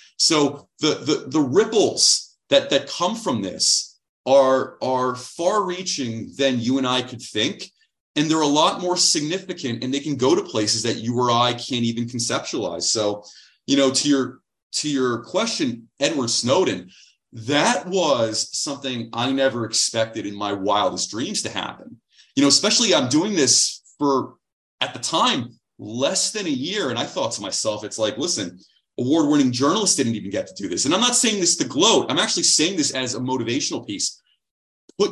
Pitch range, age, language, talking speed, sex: 115-160 Hz, 30-49, English, 180 wpm, male